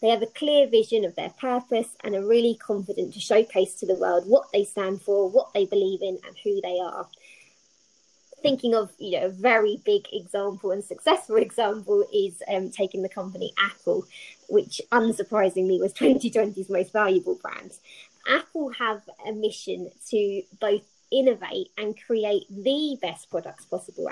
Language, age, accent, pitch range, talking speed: English, 20-39, British, 200-265 Hz, 165 wpm